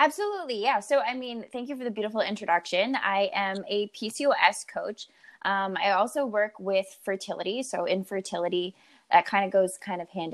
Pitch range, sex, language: 180-230 Hz, female, English